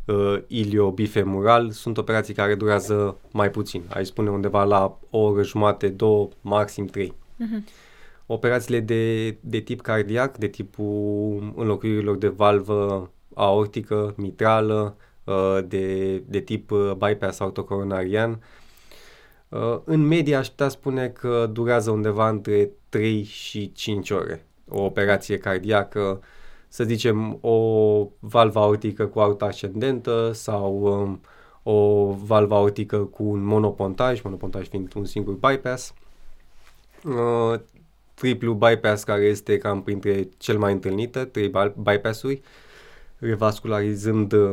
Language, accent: Romanian, native